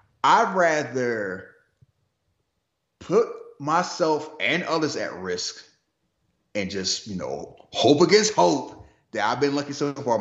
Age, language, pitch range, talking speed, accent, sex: 30-49, English, 110-185 Hz, 125 wpm, American, male